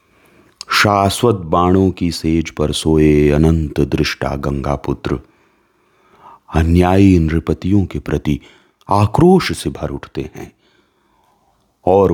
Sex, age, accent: male, 40-59, native